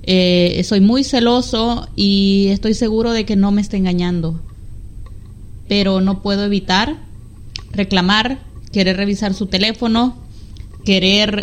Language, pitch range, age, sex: Spanish, 190-235 Hz, 20-39, female